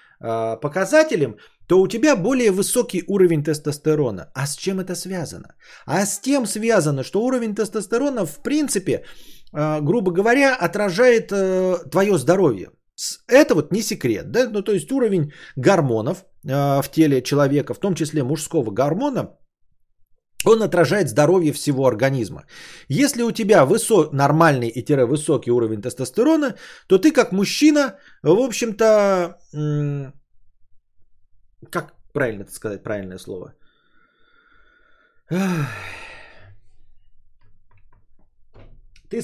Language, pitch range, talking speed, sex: Bulgarian, 135-220 Hz, 105 wpm, male